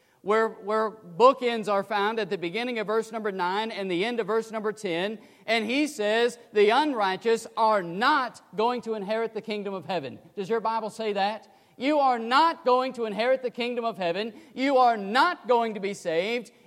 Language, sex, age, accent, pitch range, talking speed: English, male, 40-59, American, 200-250 Hz, 200 wpm